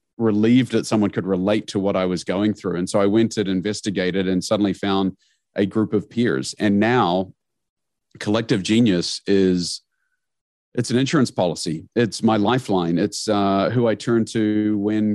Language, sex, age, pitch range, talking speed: English, male, 40-59, 95-110 Hz, 170 wpm